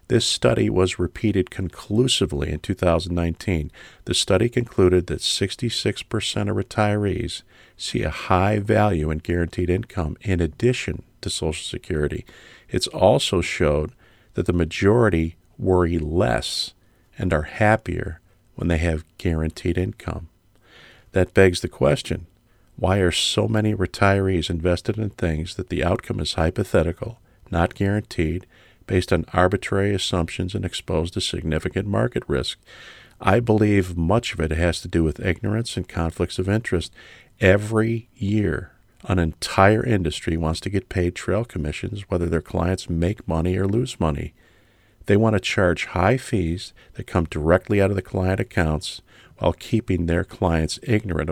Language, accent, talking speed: English, American, 145 wpm